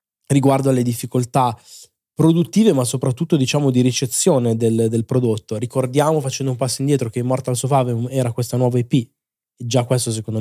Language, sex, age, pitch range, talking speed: Italian, male, 20-39, 120-140 Hz, 155 wpm